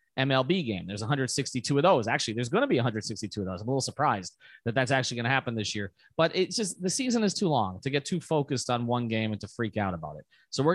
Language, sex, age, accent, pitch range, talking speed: English, male, 30-49, American, 120-165 Hz, 275 wpm